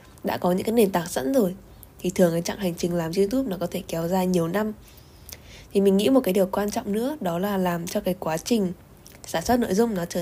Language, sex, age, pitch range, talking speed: Vietnamese, female, 10-29, 175-225 Hz, 265 wpm